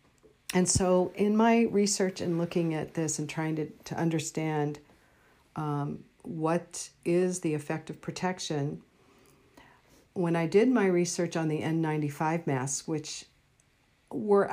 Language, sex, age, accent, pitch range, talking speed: English, female, 50-69, American, 145-175 Hz, 140 wpm